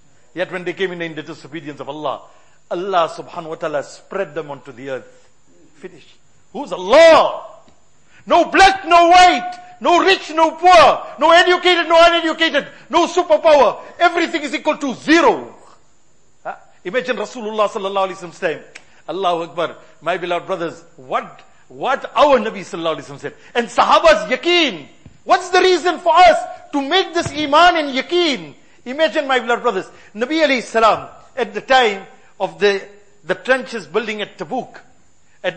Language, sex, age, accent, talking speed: English, male, 50-69, Indian, 155 wpm